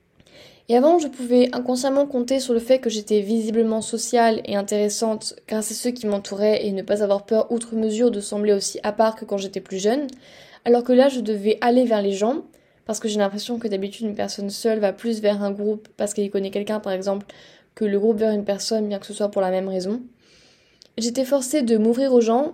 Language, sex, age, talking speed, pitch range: French, female, 10-29, 230 wpm, 205-235 Hz